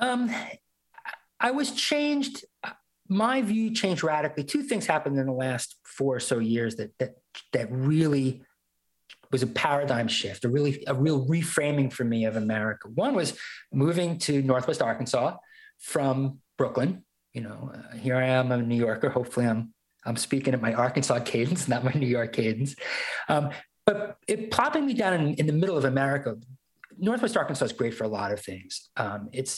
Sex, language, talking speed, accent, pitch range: male, English, 180 wpm, American, 120-160 Hz